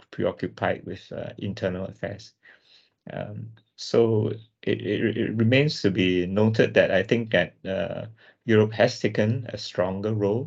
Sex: male